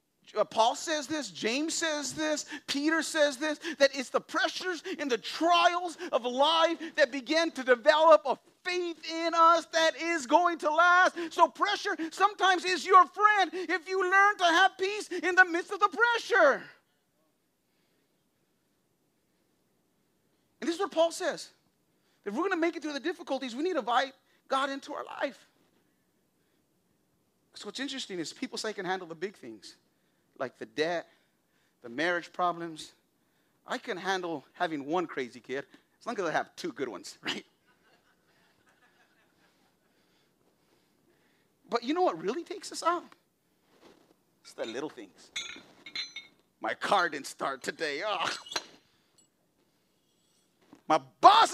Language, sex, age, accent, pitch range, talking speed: English, male, 40-59, American, 270-370 Hz, 150 wpm